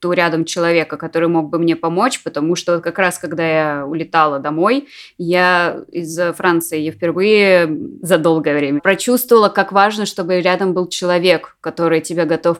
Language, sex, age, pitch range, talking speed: Russian, female, 20-39, 165-200 Hz, 150 wpm